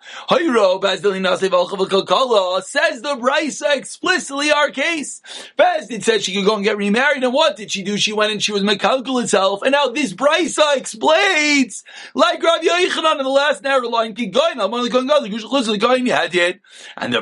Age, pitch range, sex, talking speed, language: 30-49, 190-265 Hz, male, 140 wpm, English